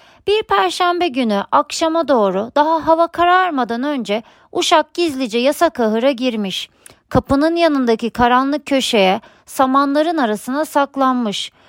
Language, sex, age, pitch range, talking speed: Turkish, female, 40-59, 235-325 Hz, 110 wpm